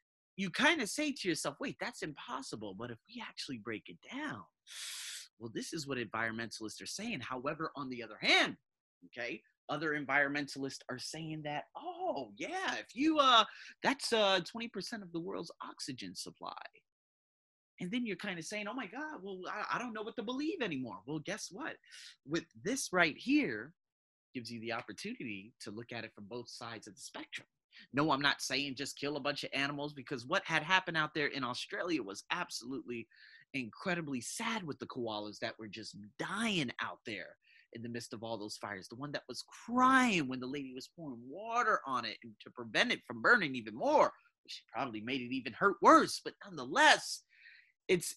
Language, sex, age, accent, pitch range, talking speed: English, male, 30-49, American, 120-195 Hz, 190 wpm